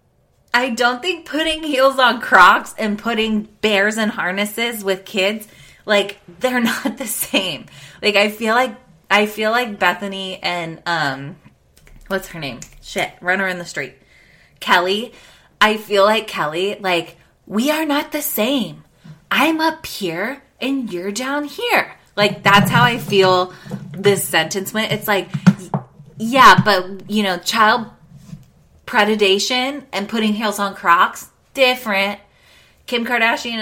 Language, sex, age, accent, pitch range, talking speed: English, female, 20-39, American, 175-225 Hz, 140 wpm